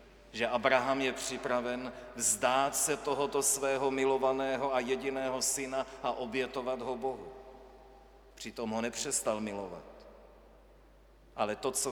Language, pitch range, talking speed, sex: Czech, 120-140 Hz, 115 wpm, male